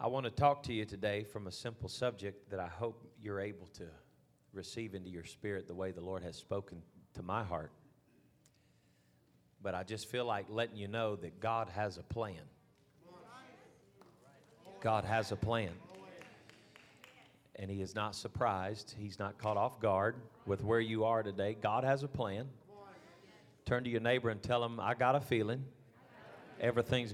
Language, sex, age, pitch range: English, male, 40-59, 105-125 Hz